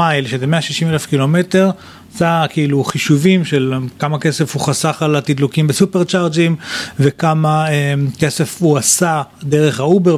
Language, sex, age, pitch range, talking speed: Hebrew, male, 30-49, 140-175 Hz, 135 wpm